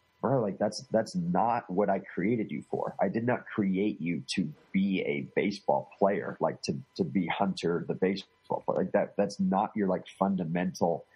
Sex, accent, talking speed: male, American, 185 wpm